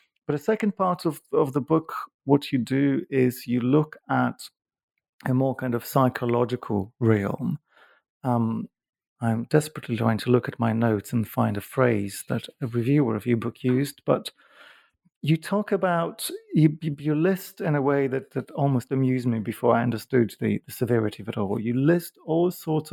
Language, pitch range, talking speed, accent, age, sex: English, 115-140 Hz, 180 wpm, British, 40-59, male